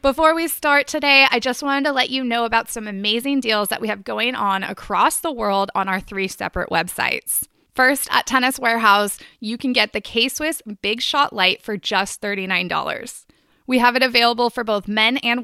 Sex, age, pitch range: female, 20-39, 210-265 Hz